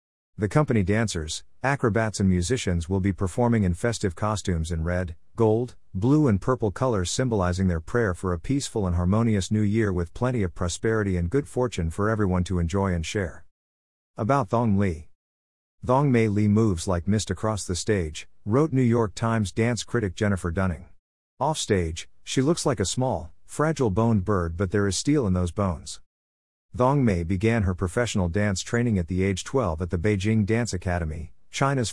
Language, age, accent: English, 50-69, American